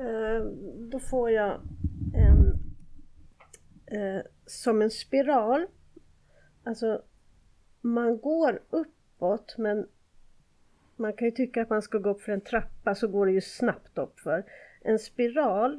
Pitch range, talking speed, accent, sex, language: 195-240 Hz, 130 wpm, native, female, Swedish